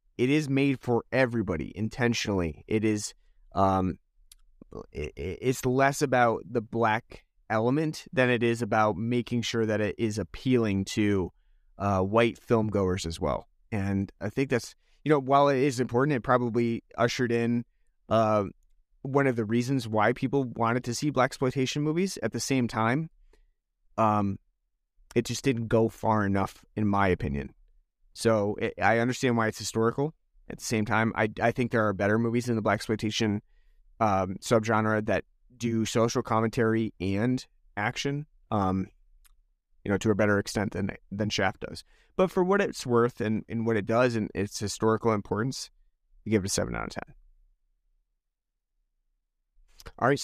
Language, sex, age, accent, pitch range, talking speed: English, male, 30-49, American, 105-125 Hz, 160 wpm